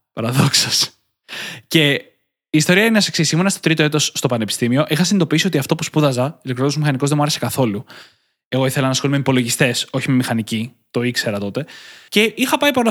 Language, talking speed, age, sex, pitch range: Greek, 190 wpm, 20-39, male, 130-210 Hz